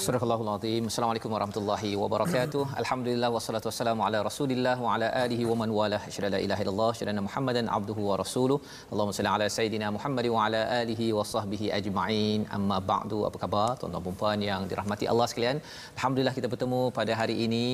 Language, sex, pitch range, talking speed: Malayalam, male, 105-120 Hz, 175 wpm